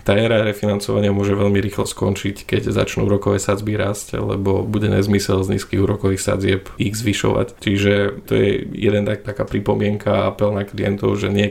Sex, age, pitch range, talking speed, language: male, 20-39, 100-105 Hz, 175 wpm, Slovak